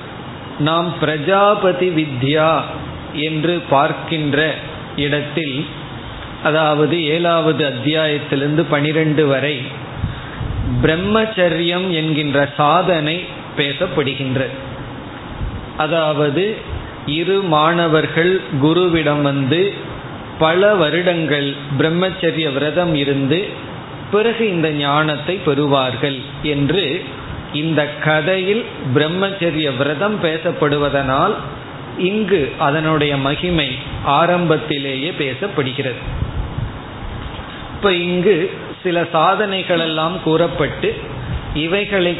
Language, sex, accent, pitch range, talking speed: Tamil, male, native, 140-170 Hz, 65 wpm